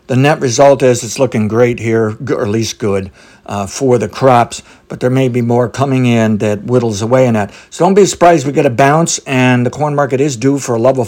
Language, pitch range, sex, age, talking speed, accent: English, 115-140 Hz, male, 60-79, 245 wpm, American